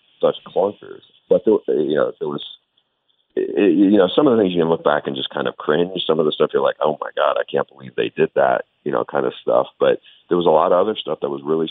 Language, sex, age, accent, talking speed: English, male, 40-59, American, 280 wpm